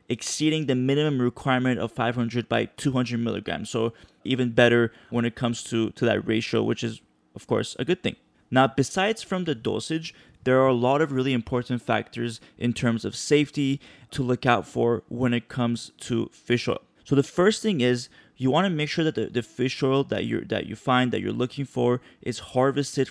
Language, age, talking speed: English, 20-39, 205 wpm